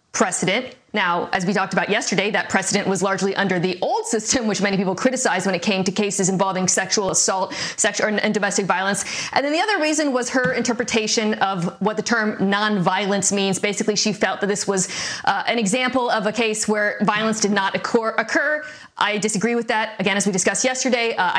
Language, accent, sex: English, American, female